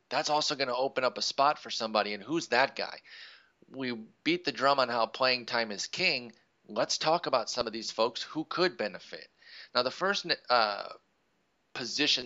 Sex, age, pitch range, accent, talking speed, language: male, 30-49, 110-135 Hz, American, 190 wpm, English